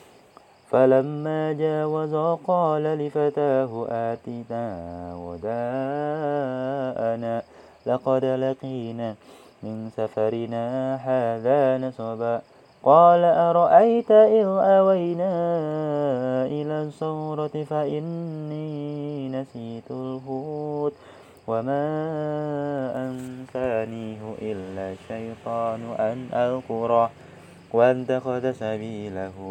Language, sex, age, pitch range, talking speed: Indonesian, male, 30-49, 115-145 Hz, 60 wpm